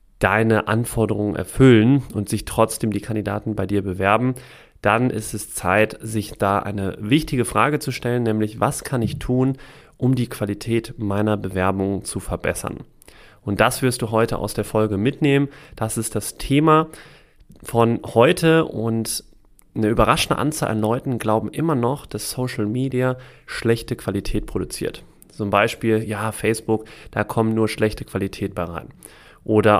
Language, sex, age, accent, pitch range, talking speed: German, male, 30-49, German, 105-125 Hz, 155 wpm